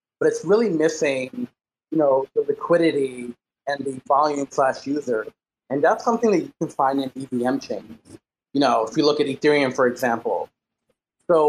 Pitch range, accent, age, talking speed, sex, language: 135-170 Hz, American, 30-49, 170 wpm, male, English